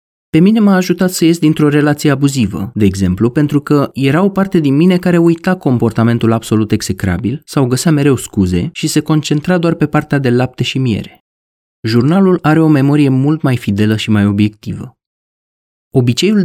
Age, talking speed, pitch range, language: 30-49, 175 wpm, 110-165 Hz, Romanian